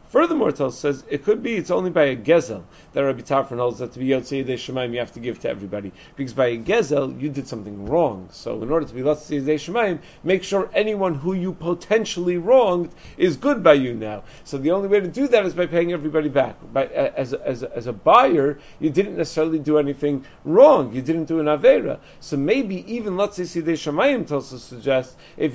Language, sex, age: English, male, 40-59